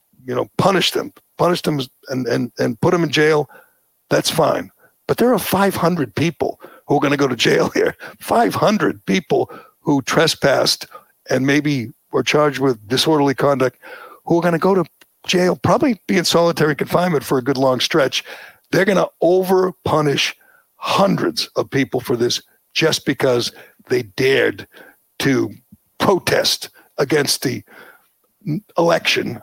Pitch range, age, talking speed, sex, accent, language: 130-160 Hz, 60-79, 155 wpm, male, American, English